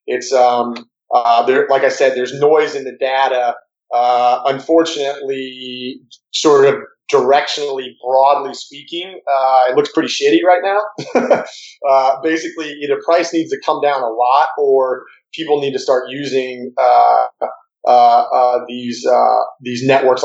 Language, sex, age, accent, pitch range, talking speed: English, male, 30-49, American, 125-155 Hz, 145 wpm